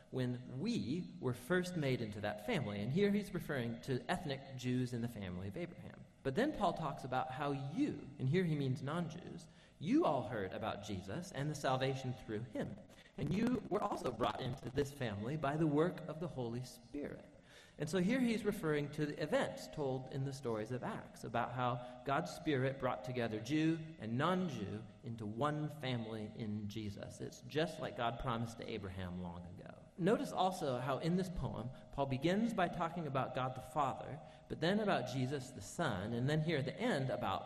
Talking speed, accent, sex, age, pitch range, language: 195 wpm, American, male, 40-59, 115-160 Hz, English